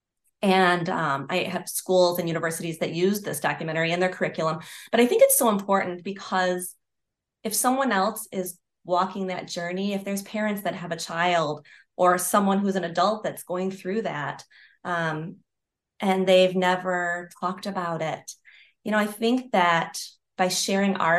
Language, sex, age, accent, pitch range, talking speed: English, female, 30-49, American, 170-200 Hz, 165 wpm